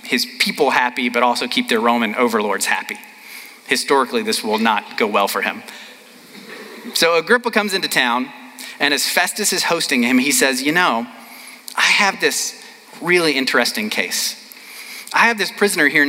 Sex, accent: male, American